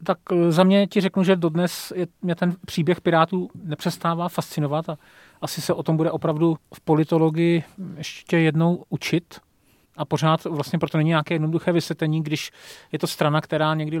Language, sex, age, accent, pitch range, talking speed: Czech, male, 40-59, native, 145-170 Hz, 170 wpm